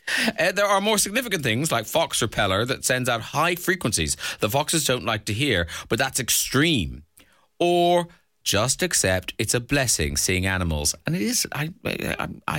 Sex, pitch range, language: male, 90-145 Hz, English